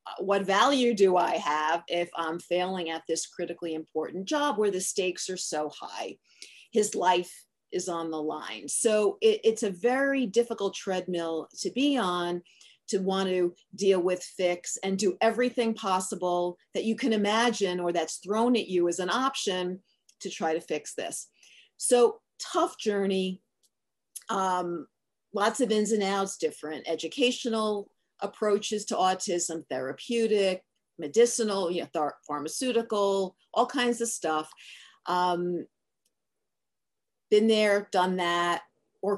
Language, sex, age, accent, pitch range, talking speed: English, female, 40-59, American, 175-220 Hz, 140 wpm